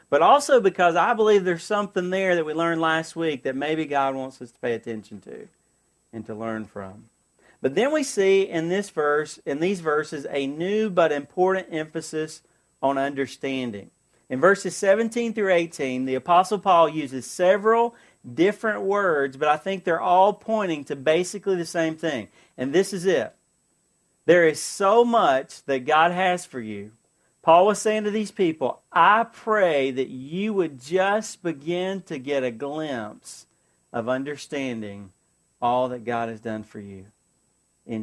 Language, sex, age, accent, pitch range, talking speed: English, male, 40-59, American, 130-205 Hz, 165 wpm